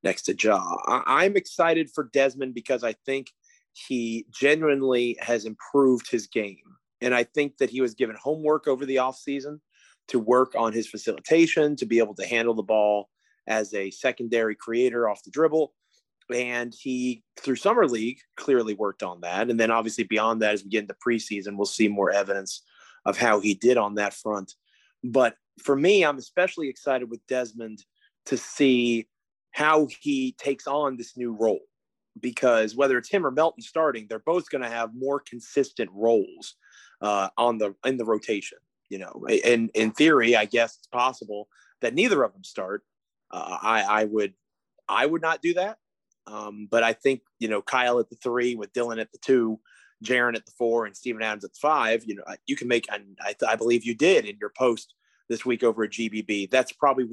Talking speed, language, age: 195 wpm, English, 30-49